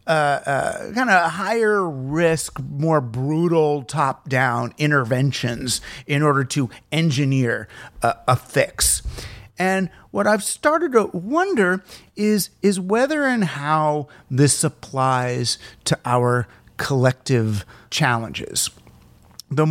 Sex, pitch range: male, 125-180 Hz